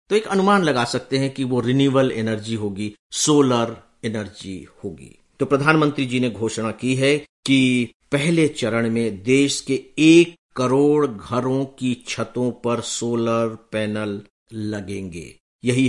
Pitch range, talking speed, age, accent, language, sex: 110-130 Hz, 140 wpm, 50-69, Indian, English, male